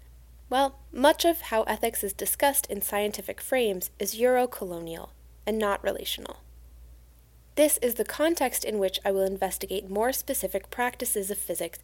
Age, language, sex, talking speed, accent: 10-29, English, female, 145 wpm, American